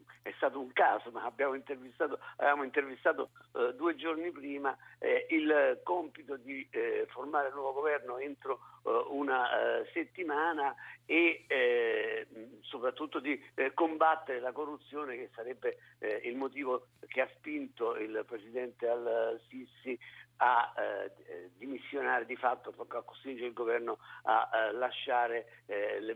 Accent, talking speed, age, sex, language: native, 140 wpm, 50-69, male, Italian